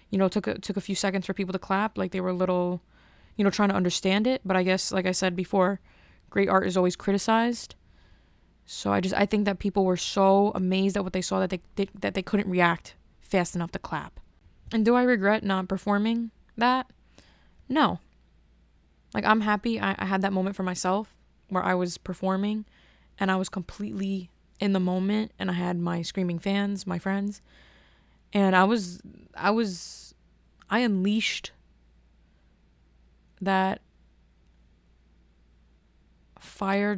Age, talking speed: 20-39, 170 wpm